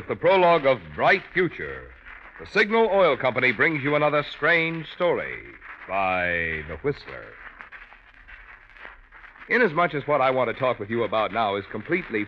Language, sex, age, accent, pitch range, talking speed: English, male, 60-79, American, 135-200 Hz, 150 wpm